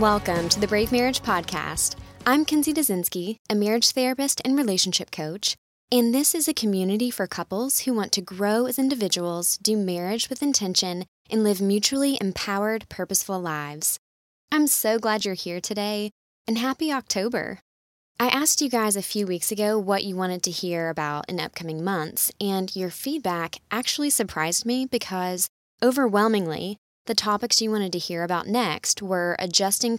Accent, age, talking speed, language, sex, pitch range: American, 20-39, 165 wpm, English, female, 180-230 Hz